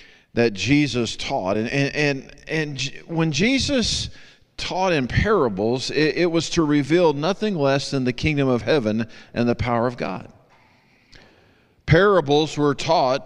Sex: male